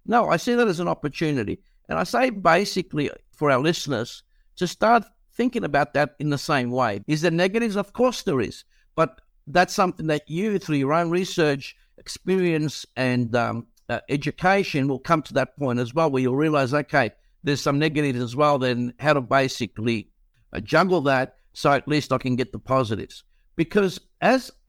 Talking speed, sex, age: 185 wpm, male, 60-79